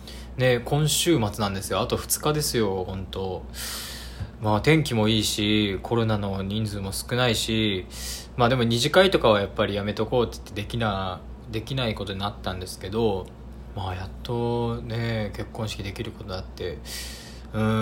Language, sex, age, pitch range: Japanese, male, 20-39, 95-120 Hz